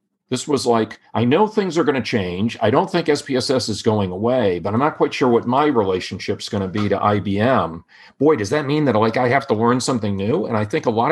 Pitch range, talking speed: 100-130 Hz, 255 wpm